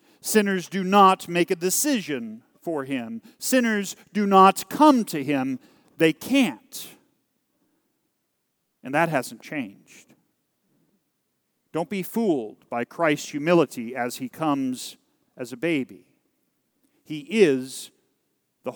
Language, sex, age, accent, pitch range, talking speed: English, male, 40-59, American, 150-230 Hz, 110 wpm